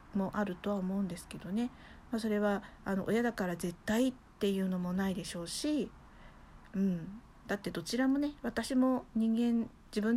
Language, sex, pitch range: Japanese, female, 180-245 Hz